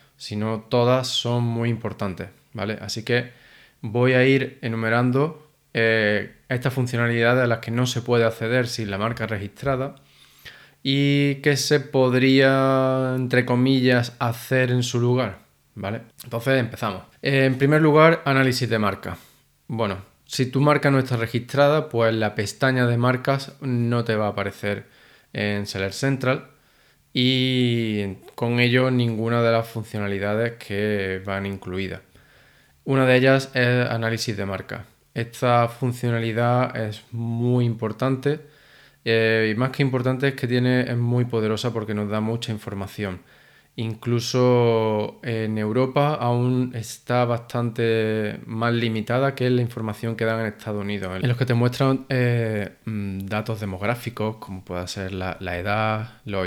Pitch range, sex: 110-125 Hz, male